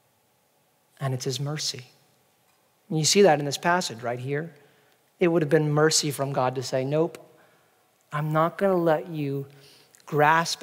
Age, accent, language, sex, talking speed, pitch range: 40-59, American, English, male, 165 wpm, 140-170 Hz